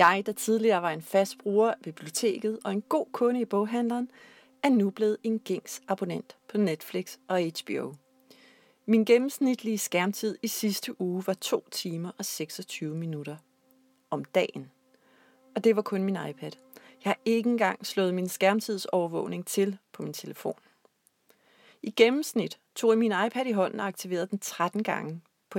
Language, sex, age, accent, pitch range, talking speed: Danish, female, 30-49, native, 175-225 Hz, 160 wpm